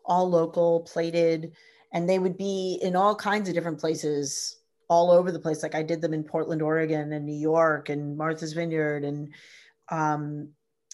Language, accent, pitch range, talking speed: English, American, 160-205 Hz, 175 wpm